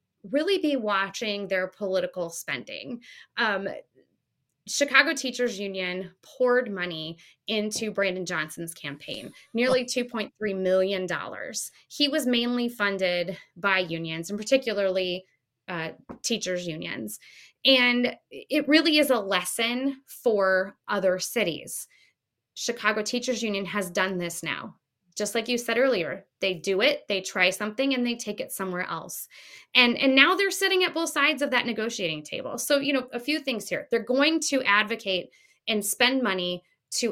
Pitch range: 190-265 Hz